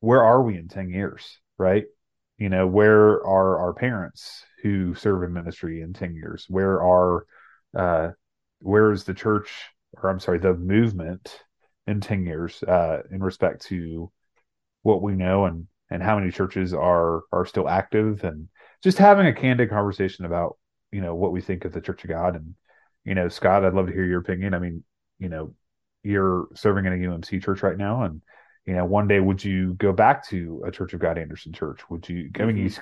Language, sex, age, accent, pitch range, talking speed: English, male, 30-49, American, 90-105 Hz, 200 wpm